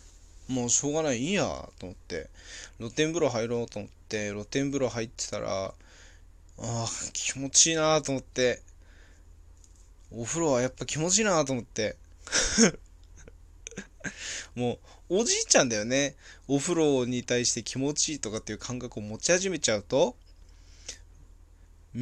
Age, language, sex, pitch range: 20-39, Japanese, male, 85-140 Hz